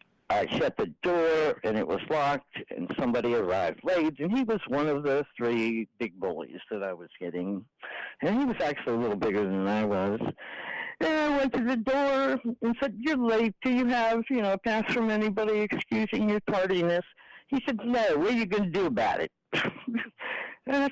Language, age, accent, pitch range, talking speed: English, 60-79, American, 185-280 Hz, 200 wpm